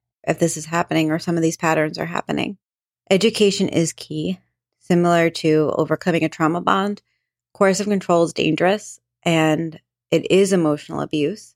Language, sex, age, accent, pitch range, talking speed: English, female, 30-49, American, 155-180 Hz, 155 wpm